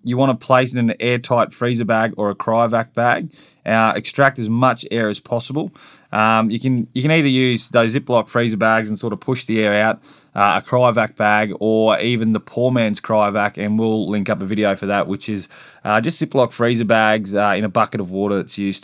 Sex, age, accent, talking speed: male, 20-39, Australian, 230 wpm